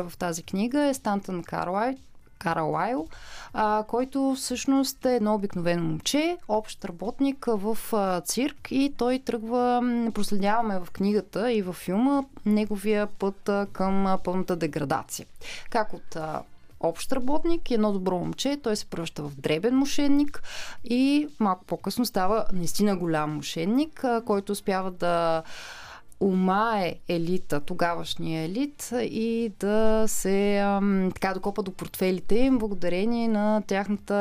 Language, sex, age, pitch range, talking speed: Bulgarian, female, 20-39, 185-240 Hz, 120 wpm